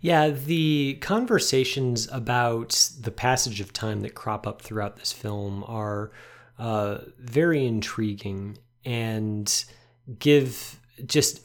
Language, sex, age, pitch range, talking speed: English, male, 30-49, 115-145 Hz, 110 wpm